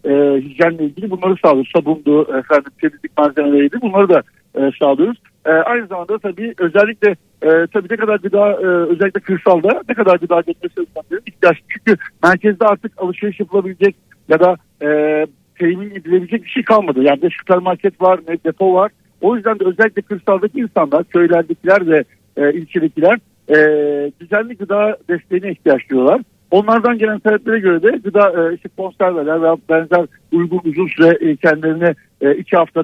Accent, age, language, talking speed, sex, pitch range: native, 60-79, Turkish, 155 wpm, male, 160-210 Hz